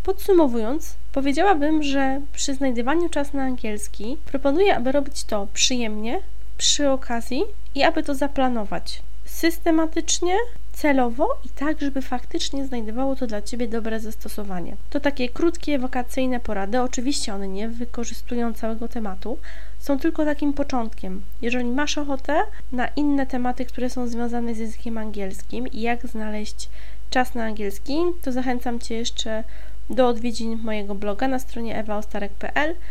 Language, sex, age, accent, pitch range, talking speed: Polish, female, 20-39, native, 225-285 Hz, 135 wpm